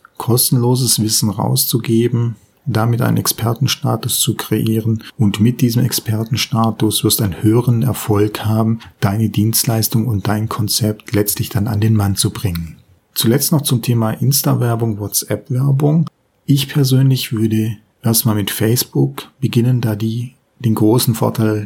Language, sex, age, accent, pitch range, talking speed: German, male, 40-59, German, 105-125 Hz, 135 wpm